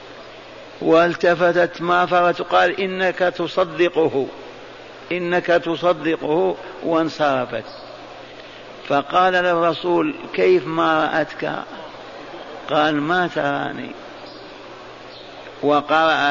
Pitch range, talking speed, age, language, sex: 150-180 Hz, 65 wpm, 50-69, Arabic, male